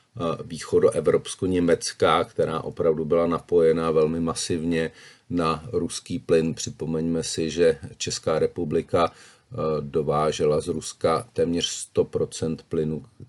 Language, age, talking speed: Czech, 40-59, 95 wpm